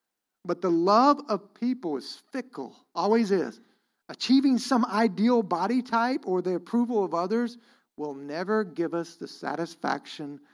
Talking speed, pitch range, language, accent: 140 wpm, 170-230 Hz, English, American